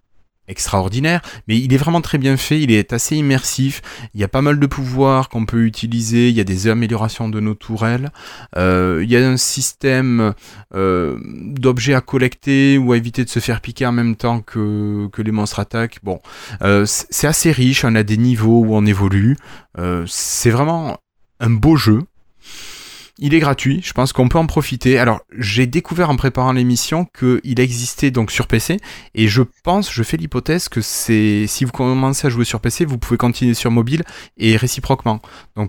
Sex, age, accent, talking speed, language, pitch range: male, 20-39, French, 195 wpm, French, 110-135 Hz